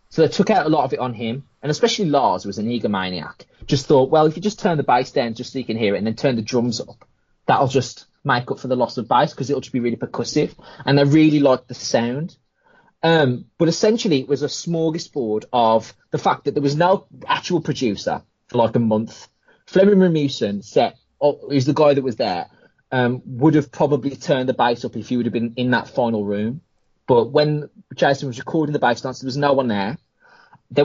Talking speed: 230 wpm